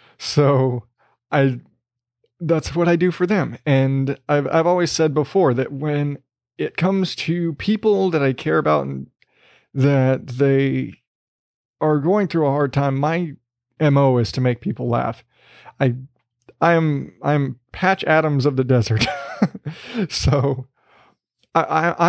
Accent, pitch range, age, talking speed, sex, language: American, 130-175 Hz, 30-49, 140 wpm, male, English